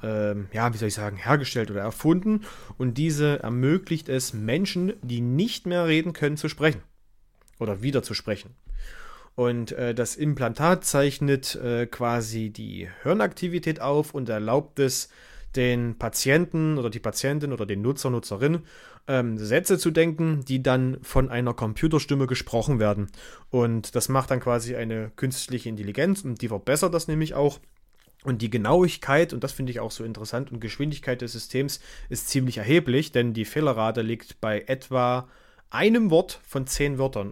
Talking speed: 155 wpm